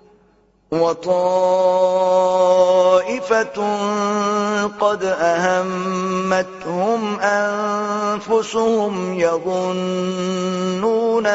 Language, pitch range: Urdu, 185-230 Hz